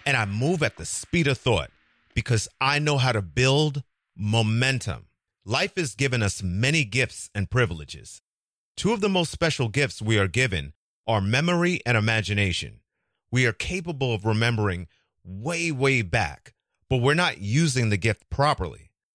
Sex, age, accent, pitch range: male, 30-49, American, 105-145 Hz